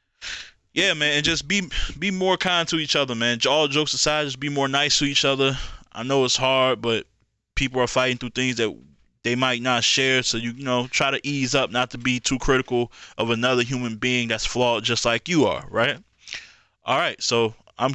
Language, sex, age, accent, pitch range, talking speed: English, male, 20-39, American, 115-130 Hz, 215 wpm